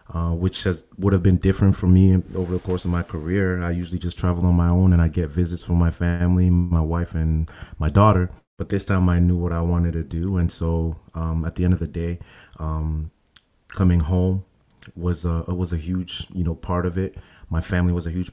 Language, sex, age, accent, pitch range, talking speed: English, male, 30-49, American, 85-95 Hz, 230 wpm